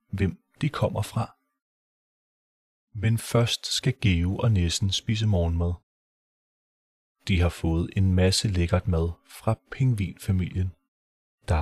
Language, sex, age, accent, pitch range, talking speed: Danish, male, 30-49, native, 90-120 Hz, 115 wpm